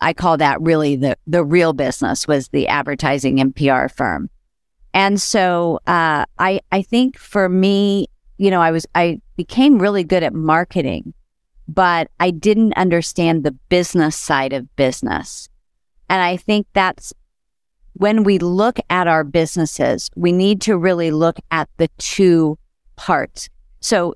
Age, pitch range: 50-69, 155-185 Hz